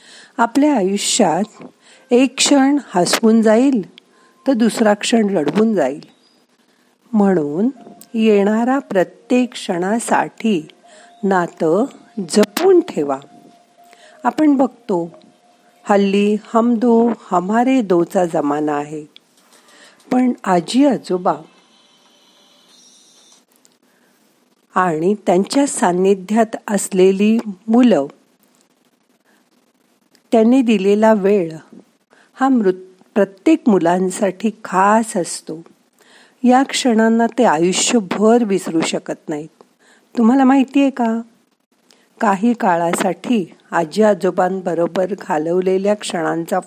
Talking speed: 80 wpm